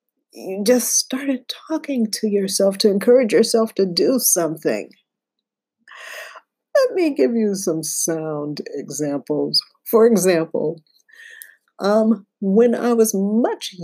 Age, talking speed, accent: 50-69, 115 wpm, American